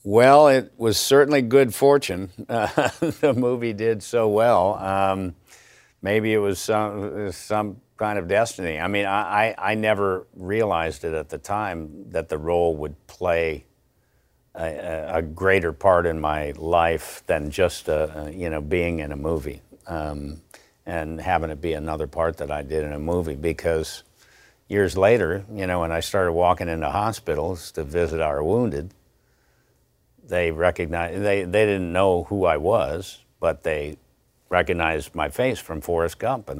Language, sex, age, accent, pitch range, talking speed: English, male, 60-79, American, 80-105 Hz, 165 wpm